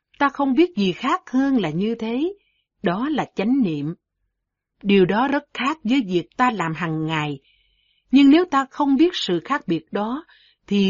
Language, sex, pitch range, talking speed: Vietnamese, female, 170-250 Hz, 180 wpm